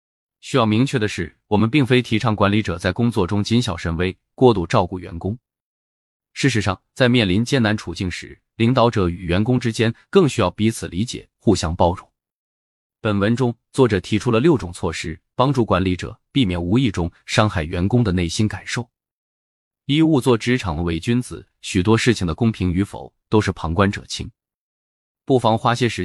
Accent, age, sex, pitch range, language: native, 20-39, male, 90-120 Hz, Chinese